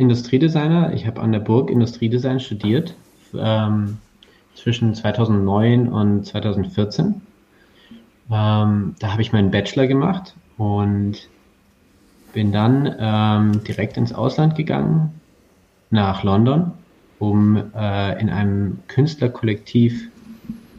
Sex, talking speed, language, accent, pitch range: male, 100 wpm, German, German, 100-125 Hz